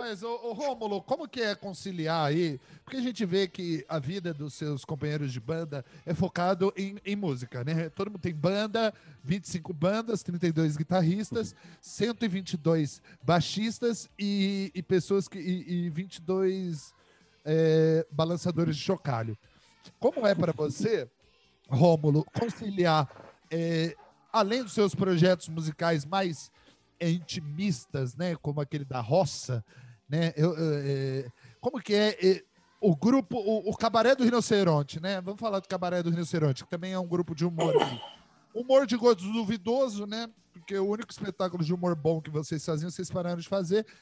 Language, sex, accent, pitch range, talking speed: Portuguese, male, Brazilian, 160-205 Hz, 150 wpm